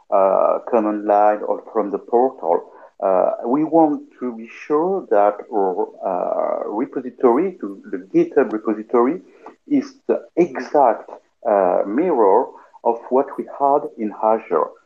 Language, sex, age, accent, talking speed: English, male, 50-69, French, 130 wpm